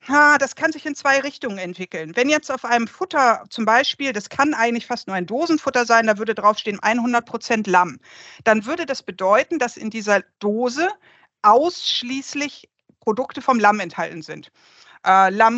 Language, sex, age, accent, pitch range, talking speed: German, female, 50-69, German, 200-265 Hz, 160 wpm